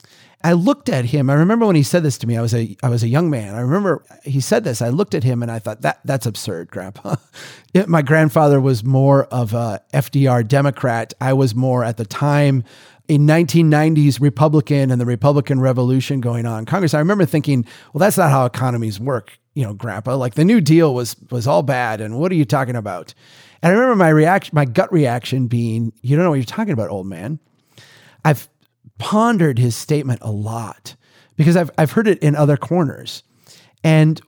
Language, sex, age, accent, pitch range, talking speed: English, male, 30-49, American, 120-160 Hz, 210 wpm